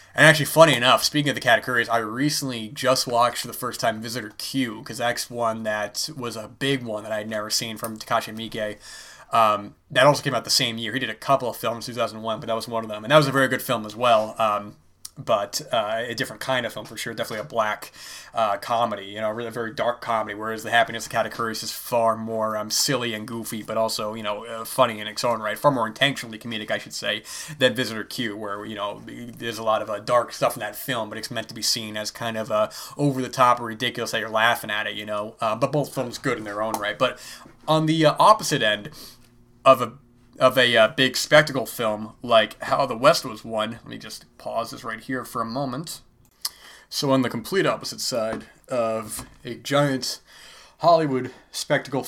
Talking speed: 235 wpm